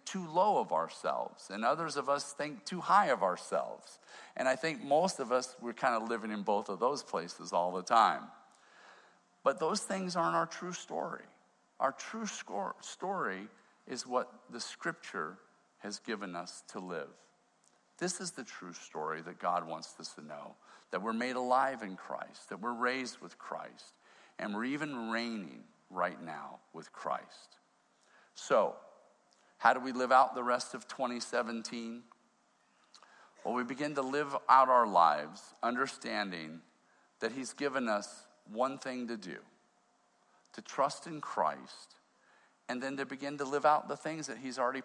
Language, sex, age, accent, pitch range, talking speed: English, male, 50-69, American, 115-145 Hz, 165 wpm